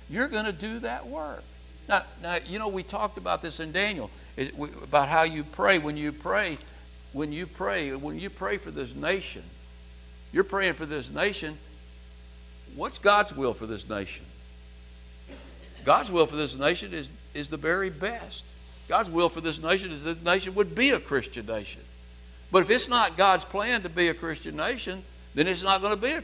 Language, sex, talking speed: English, male, 195 wpm